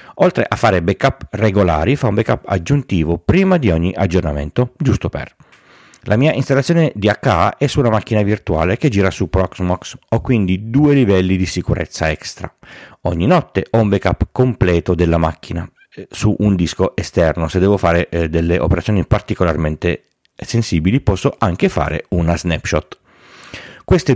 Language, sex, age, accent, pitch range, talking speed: Italian, male, 30-49, native, 85-120 Hz, 150 wpm